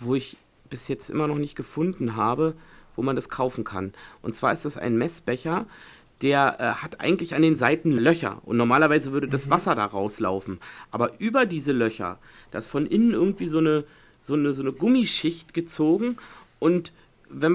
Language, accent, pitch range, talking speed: German, German, 120-160 Hz, 185 wpm